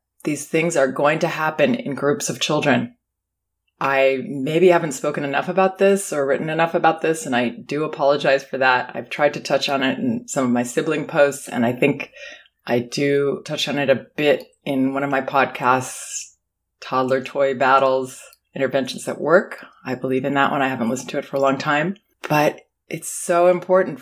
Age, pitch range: 20-39, 135-180 Hz